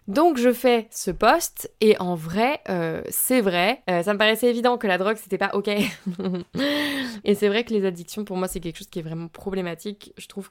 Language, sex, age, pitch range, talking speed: French, female, 20-39, 180-215 Hz, 225 wpm